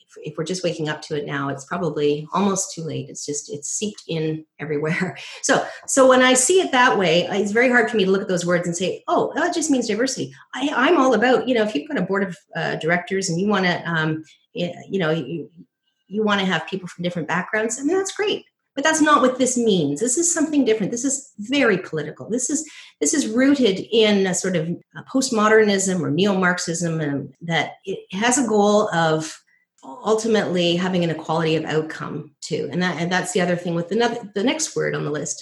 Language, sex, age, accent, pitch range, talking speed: English, female, 40-59, American, 165-230 Hz, 230 wpm